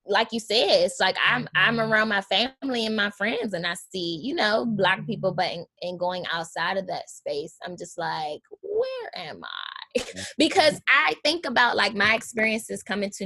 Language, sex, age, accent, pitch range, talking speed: English, female, 20-39, American, 175-220 Hz, 195 wpm